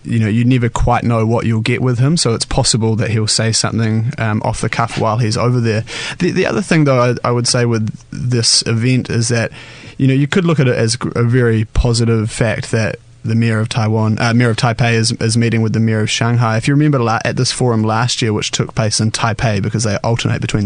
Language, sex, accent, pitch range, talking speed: English, male, Australian, 115-125 Hz, 250 wpm